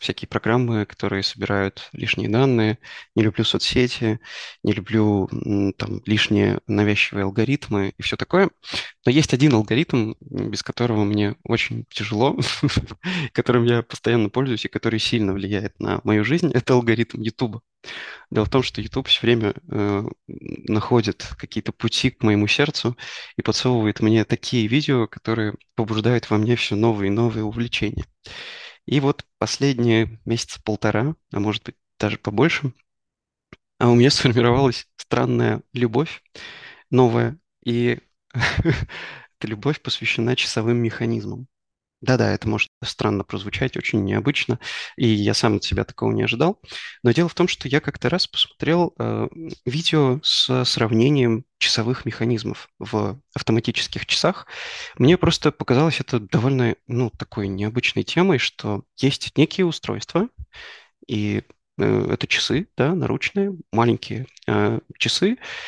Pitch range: 110-140 Hz